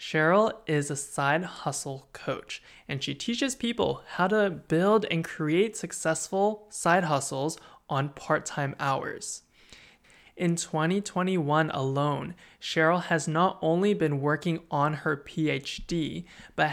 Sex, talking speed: male, 120 wpm